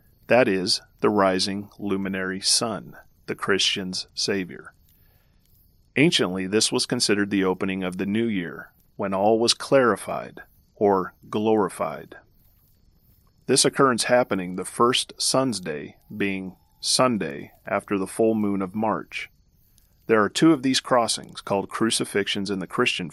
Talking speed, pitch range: 130 wpm, 95-120 Hz